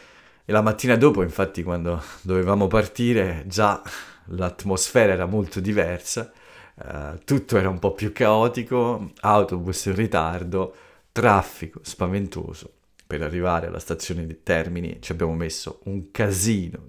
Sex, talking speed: male, 130 wpm